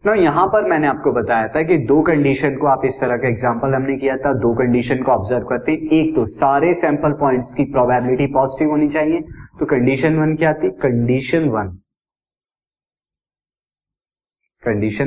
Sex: male